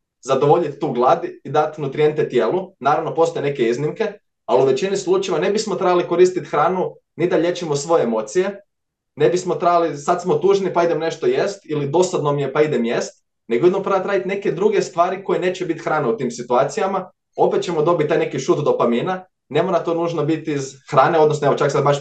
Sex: male